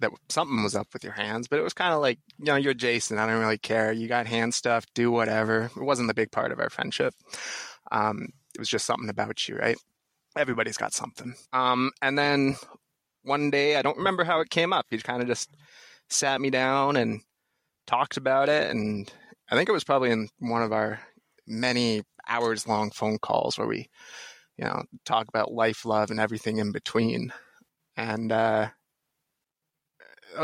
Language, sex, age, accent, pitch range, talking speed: English, male, 20-39, American, 110-130 Hz, 195 wpm